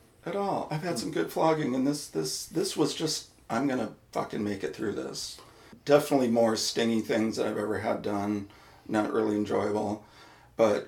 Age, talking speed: 40-59, 190 wpm